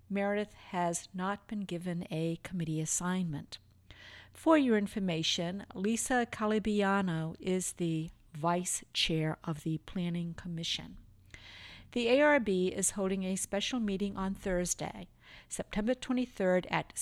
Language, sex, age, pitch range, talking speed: English, female, 50-69, 165-210 Hz, 115 wpm